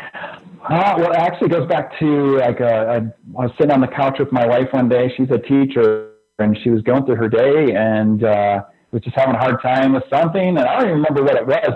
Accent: American